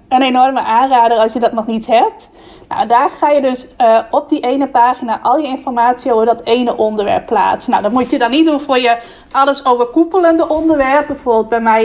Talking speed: 215 wpm